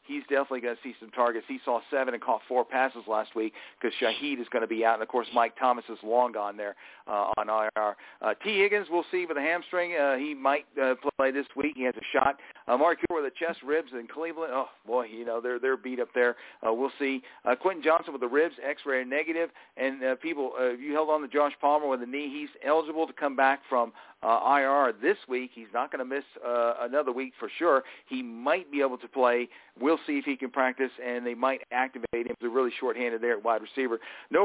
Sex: male